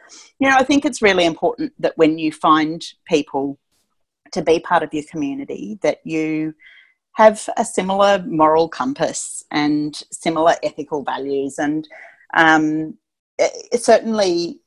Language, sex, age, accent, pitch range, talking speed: English, female, 40-59, Australian, 150-195 Hz, 130 wpm